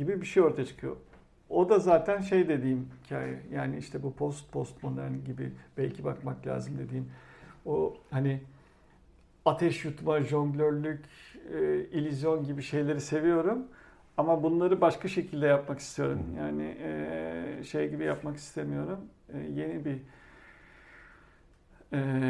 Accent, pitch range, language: native, 125-160 Hz, Turkish